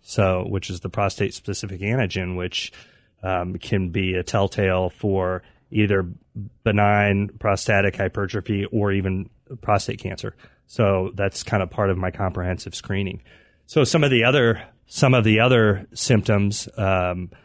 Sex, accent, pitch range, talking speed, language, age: male, American, 100-120 Hz, 145 wpm, English, 30-49